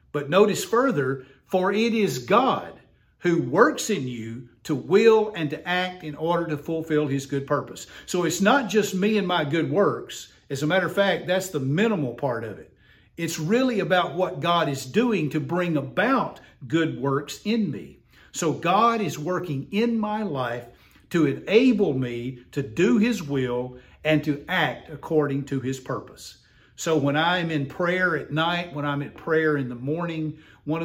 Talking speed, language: 180 wpm, English